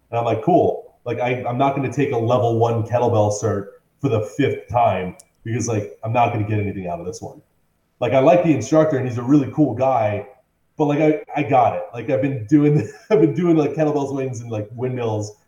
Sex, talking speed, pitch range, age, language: male, 240 wpm, 105-130 Hz, 30-49, English